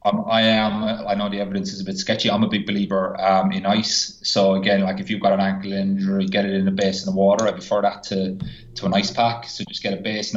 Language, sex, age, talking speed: English, male, 20-39, 265 wpm